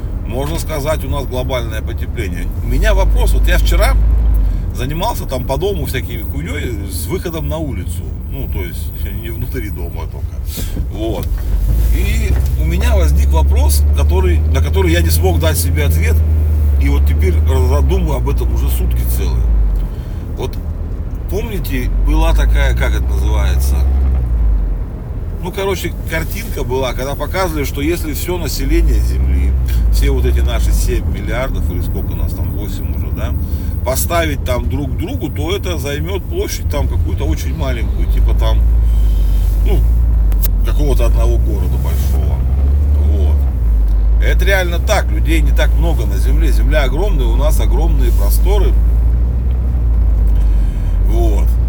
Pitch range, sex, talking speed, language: 65-85 Hz, male, 140 wpm, Russian